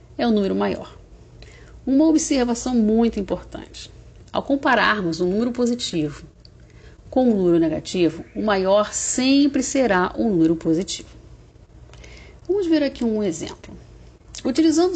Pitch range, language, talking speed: 160-235 Hz, Portuguese, 130 wpm